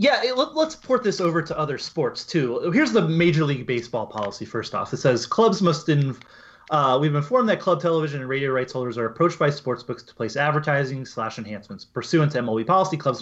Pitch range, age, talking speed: 125-170 Hz, 30-49, 210 wpm